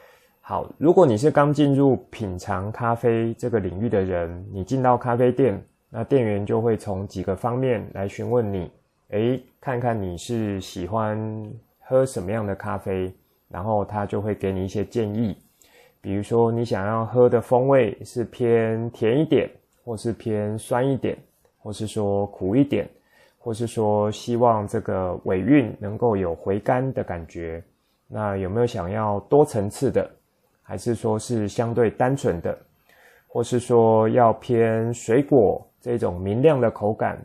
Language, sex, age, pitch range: Chinese, male, 20-39, 100-120 Hz